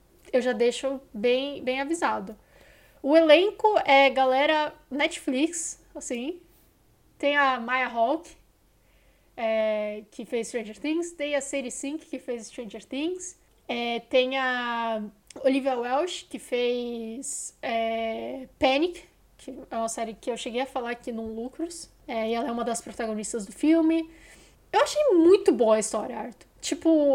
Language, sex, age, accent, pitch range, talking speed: Portuguese, female, 10-29, Brazilian, 245-295 Hz, 140 wpm